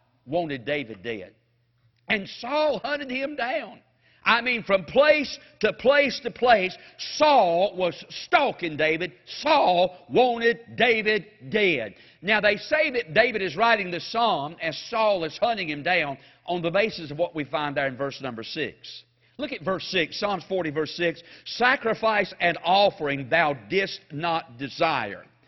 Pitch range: 165-235 Hz